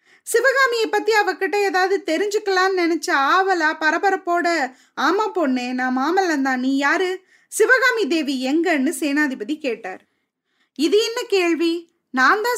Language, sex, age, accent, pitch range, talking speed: Tamil, female, 20-39, native, 285-390 Hz, 75 wpm